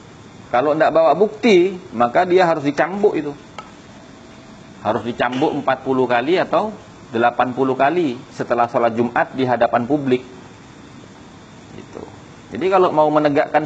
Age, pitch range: 40-59, 120-175 Hz